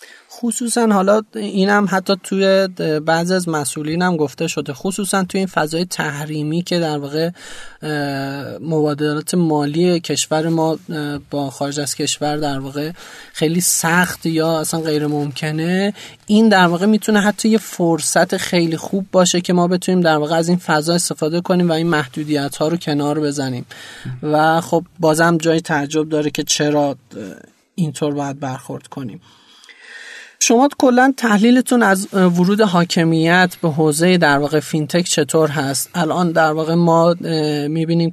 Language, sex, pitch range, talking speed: Persian, male, 150-175 Hz, 145 wpm